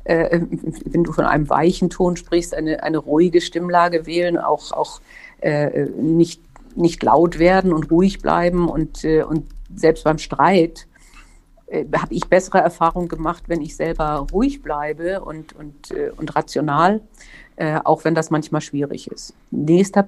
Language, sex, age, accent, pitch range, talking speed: German, female, 50-69, German, 160-185 Hz, 155 wpm